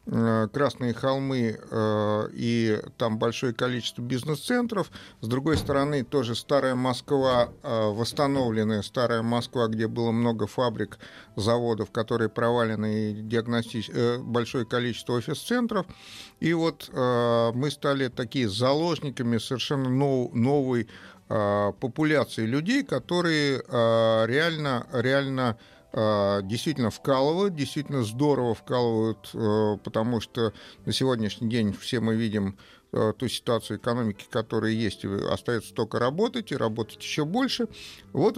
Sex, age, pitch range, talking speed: male, 50-69, 110-145 Hz, 115 wpm